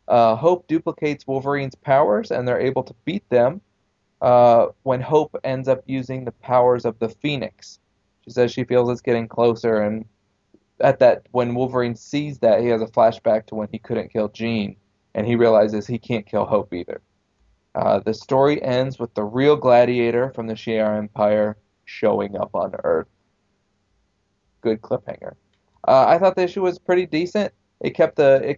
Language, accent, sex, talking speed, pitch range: English, American, male, 175 wpm, 105-130 Hz